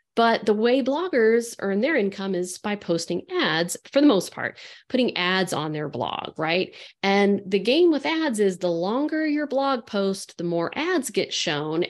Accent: American